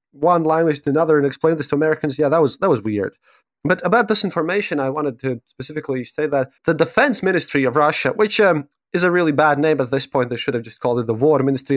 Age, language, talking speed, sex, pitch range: 20-39, English, 250 wpm, male, 130-165 Hz